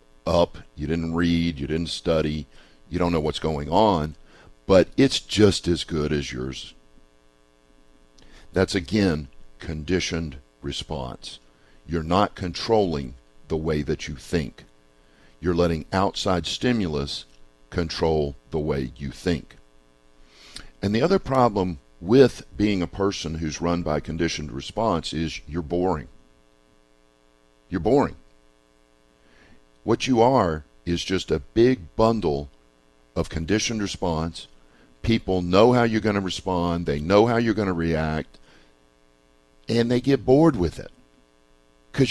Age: 50-69